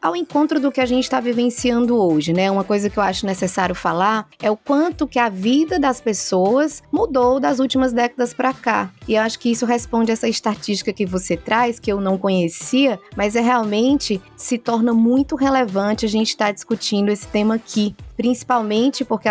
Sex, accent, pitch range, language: female, Brazilian, 195-250 Hz, Portuguese